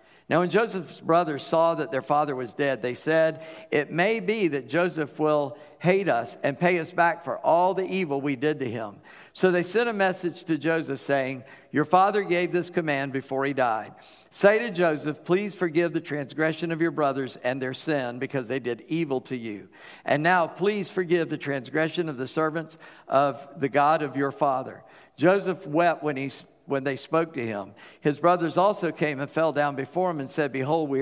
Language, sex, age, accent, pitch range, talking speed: English, male, 50-69, American, 135-175 Hz, 200 wpm